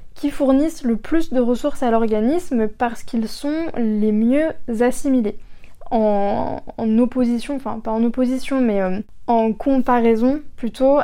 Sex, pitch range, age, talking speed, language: female, 225-260 Hz, 20-39, 140 wpm, French